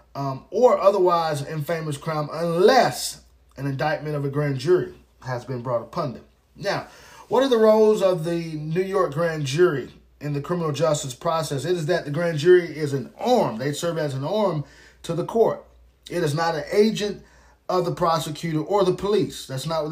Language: English